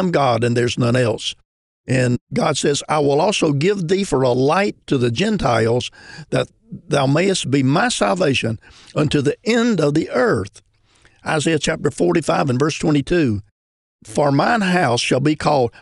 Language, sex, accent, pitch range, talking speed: English, male, American, 125-165 Hz, 165 wpm